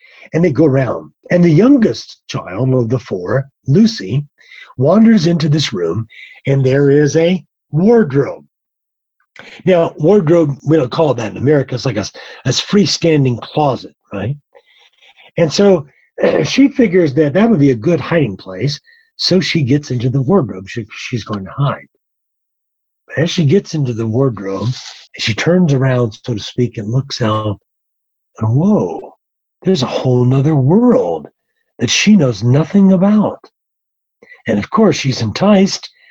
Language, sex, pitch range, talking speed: English, male, 115-170 Hz, 155 wpm